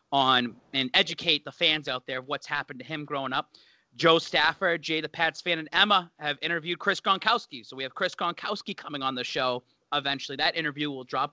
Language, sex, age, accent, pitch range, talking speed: English, male, 30-49, American, 140-165 Hz, 210 wpm